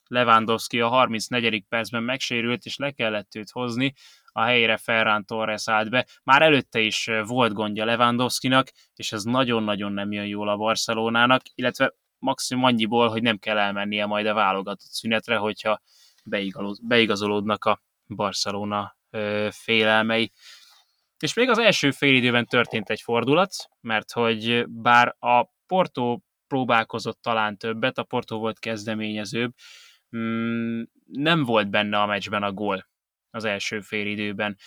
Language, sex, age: Hungarian, male, 20-39